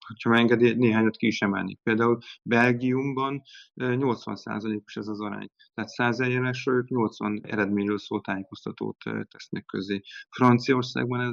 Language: Hungarian